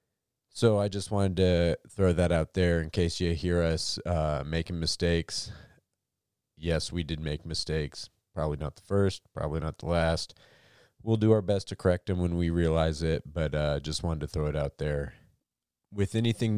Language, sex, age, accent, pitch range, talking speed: English, male, 30-49, American, 85-105 Hz, 190 wpm